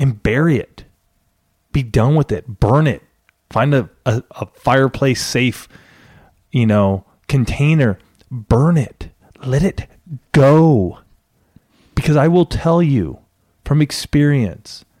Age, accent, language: 30-49, American, English